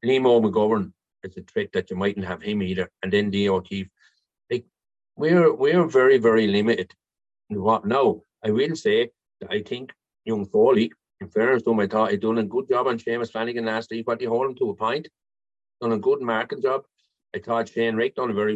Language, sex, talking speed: English, male, 210 wpm